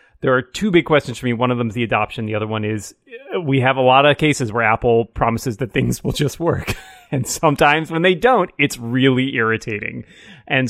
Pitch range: 115-155 Hz